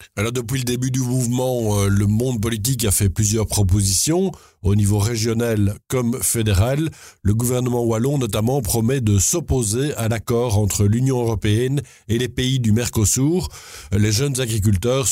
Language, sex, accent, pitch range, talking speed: French, male, French, 105-130 Hz, 145 wpm